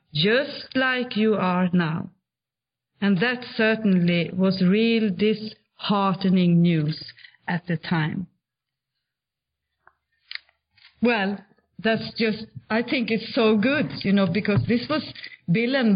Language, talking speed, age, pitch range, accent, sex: English, 115 wpm, 40-59, 175-270 Hz, Swedish, female